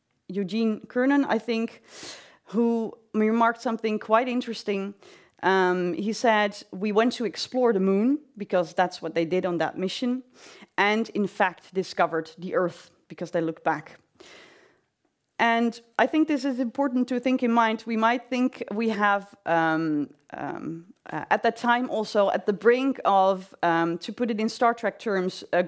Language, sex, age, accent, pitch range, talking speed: Dutch, female, 30-49, Dutch, 185-245 Hz, 165 wpm